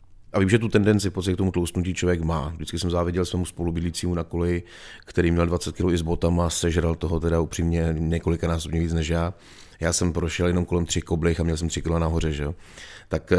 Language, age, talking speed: Czech, 30-49, 215 wpm